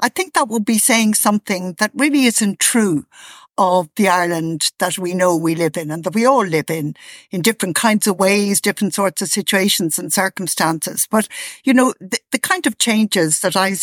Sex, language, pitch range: female, English, 180-225 Hz